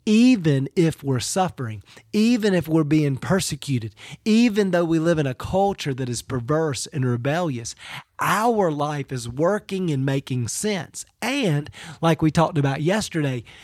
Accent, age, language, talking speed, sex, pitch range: American, 40-59, English, 150 wpm, male, 130-175 Hz